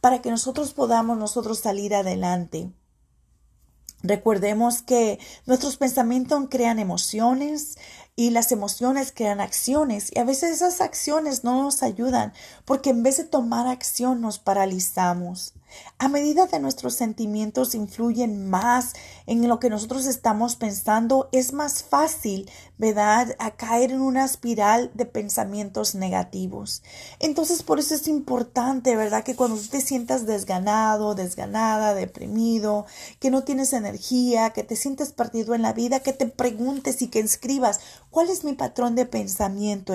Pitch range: 205-265 Hz